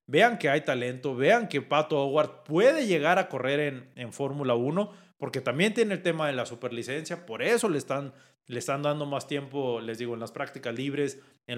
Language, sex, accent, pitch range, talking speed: Spanish, male, Mexican, 135-195 Hz, 205 wpm